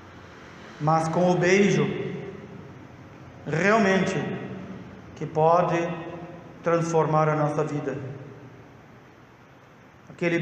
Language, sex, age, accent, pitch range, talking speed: Portuguese, male, 50-69, Brazilian, 150-185 Hz, 70 wpm